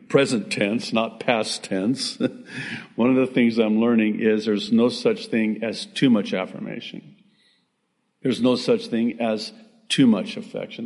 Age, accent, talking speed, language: 50-69, American, 155 wpm, English